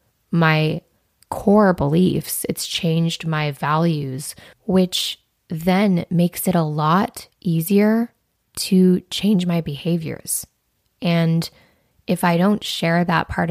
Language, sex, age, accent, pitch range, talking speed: English, female, 20-39, American, 155-180 Hz, 110 wpm